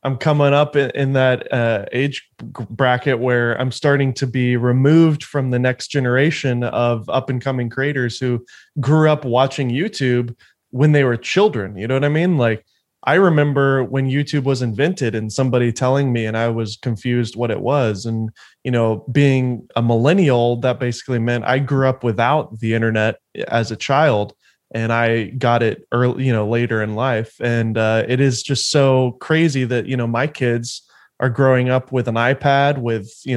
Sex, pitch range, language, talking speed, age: male, 115-135 Hz, English, 185 wpm, 20-39